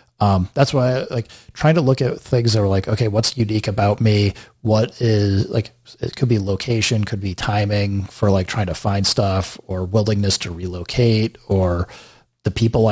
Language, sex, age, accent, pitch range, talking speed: English, male, 30-49, American, 100-120 Hz, 190 wpm